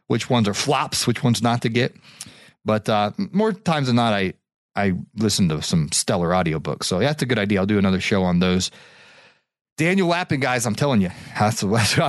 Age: 30-49